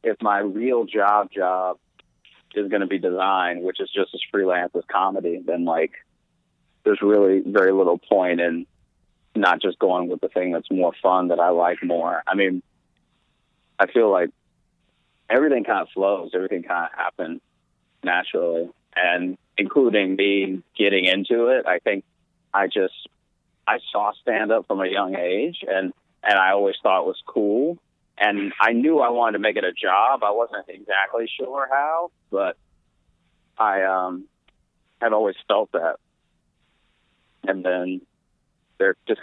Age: 30-49